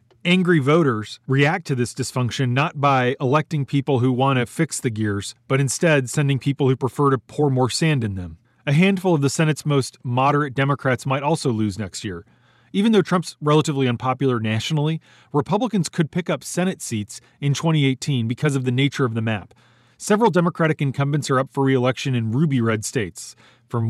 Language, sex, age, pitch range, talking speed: English, male, 30-49, 120-150 Hz, 185 wpm